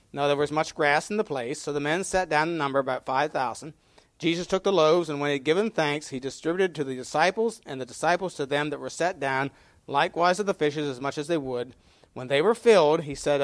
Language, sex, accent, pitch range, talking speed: English, male, American, 135-175 Hz, 255 wpm